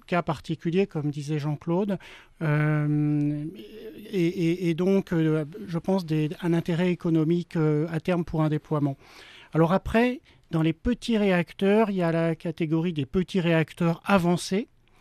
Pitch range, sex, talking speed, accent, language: 160-190 Hz, male, 150 wpm, French, French